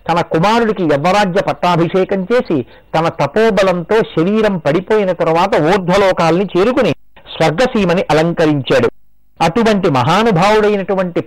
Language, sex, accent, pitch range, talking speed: Telugu, male, native, 170-220 Hz, 85 wpm